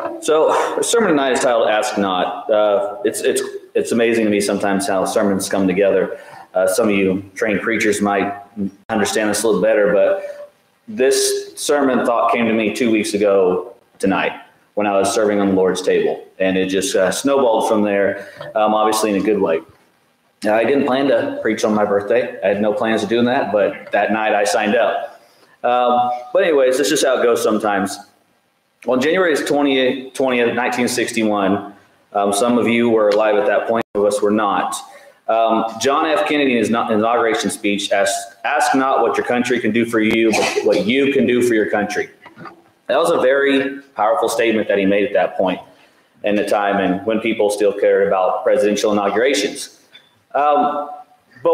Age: 30-49